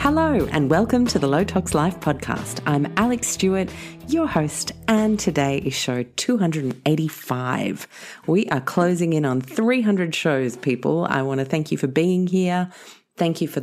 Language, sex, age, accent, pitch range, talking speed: English, female, 40-59, Australian, 130-180 Hz, 165 wpm